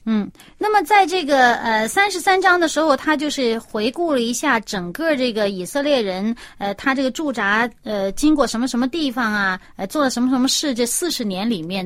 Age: 30-49